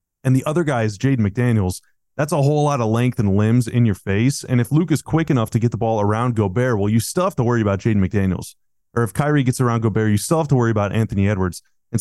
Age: 30-49